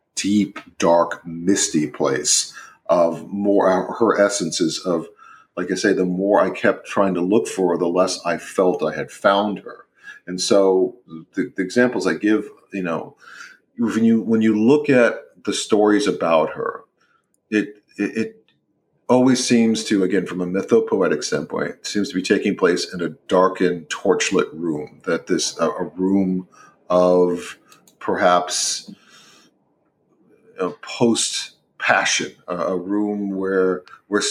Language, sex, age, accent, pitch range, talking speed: English, male, 40-59, American, 90-110 Hz, 145 wpm